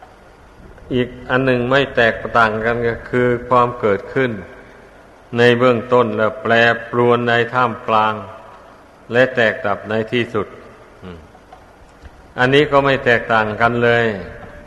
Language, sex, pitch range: Thai, male, 110-130 Hz